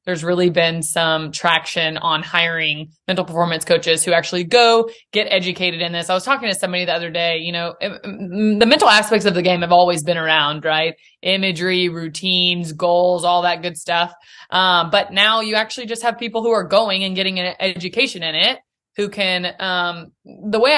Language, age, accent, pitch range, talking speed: English, 20-39, American, 175-210 Hz, 195 wpm